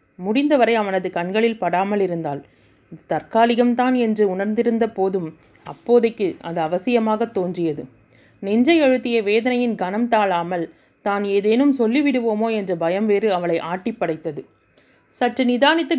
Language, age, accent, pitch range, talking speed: Tamil, 30-49, native, 180-240 Hz, 110 wpm